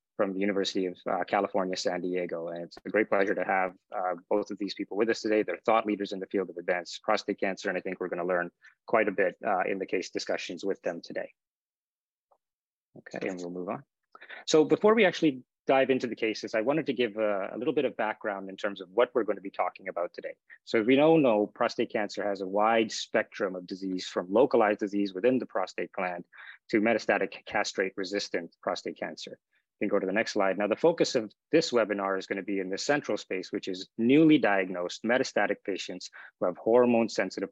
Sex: male